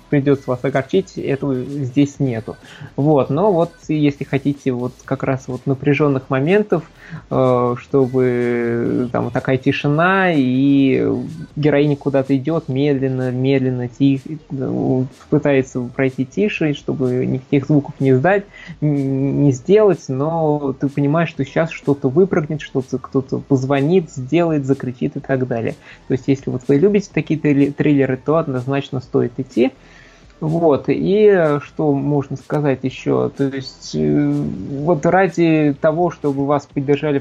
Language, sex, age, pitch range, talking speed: Russian, male, 20-39, 130-150 Hz, 130 wpm